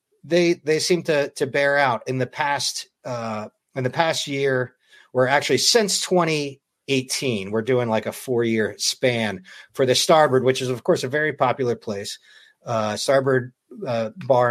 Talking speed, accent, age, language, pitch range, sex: 170 wpm, American, 50-69, English, 120-155 Hz, male